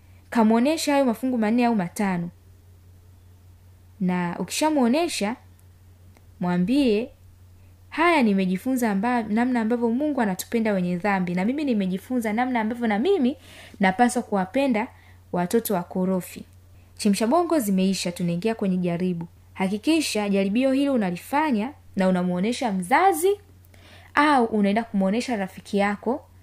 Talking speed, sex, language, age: 105 wpm, female, Swahili, 20-39